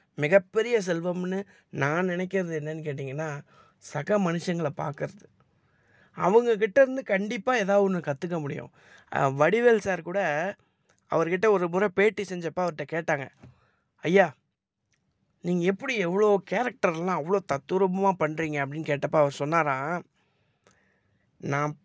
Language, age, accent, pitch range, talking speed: Tamil, 20-39, native, 150-200 Hz, 105 wpm